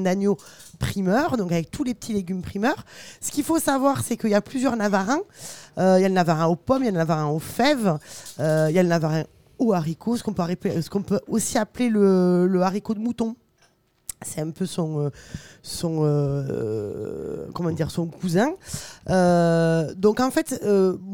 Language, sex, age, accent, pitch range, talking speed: French, female, 20-39, French, 175-235 Hz, 200 wpm